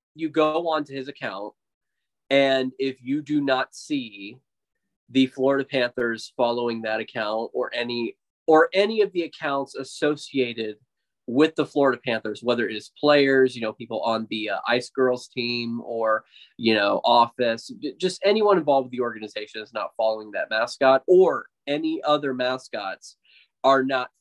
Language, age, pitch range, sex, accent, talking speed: English, 20-39, 120-145 Hz, male, American, 155 wpm